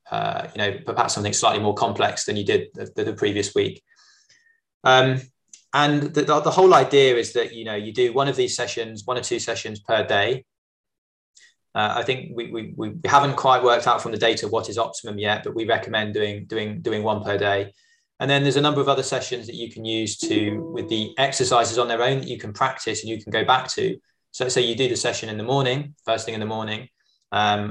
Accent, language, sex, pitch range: British, English, male, 105-135 Hz